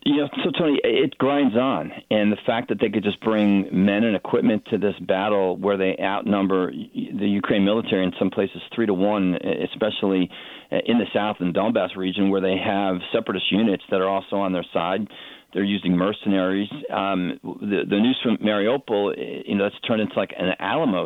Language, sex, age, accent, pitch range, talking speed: English, male, 40-59, American, 95-105 Hz, 190 wpm